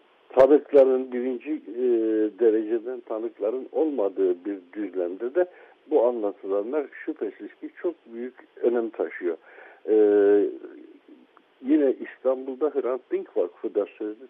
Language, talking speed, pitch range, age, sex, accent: Turkish, 105 wpm, 335-425 Hz, 60-79, male, native